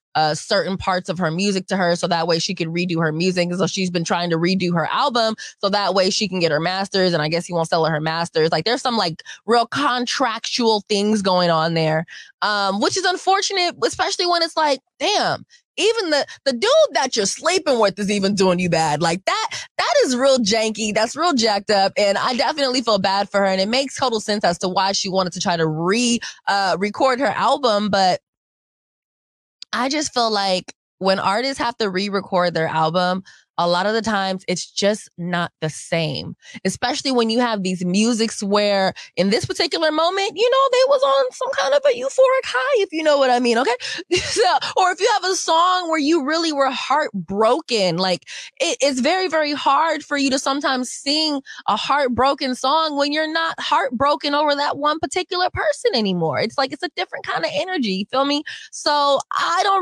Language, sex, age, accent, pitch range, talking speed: English, female, 20-39, American, 190-295 Hz, 210 wpm